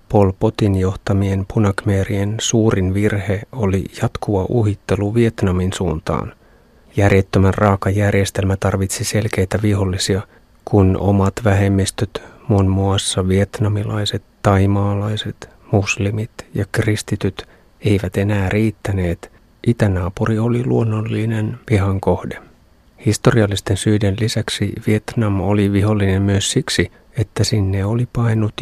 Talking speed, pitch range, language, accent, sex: 95 wpm, 100-110 Hz, Finnish, native, male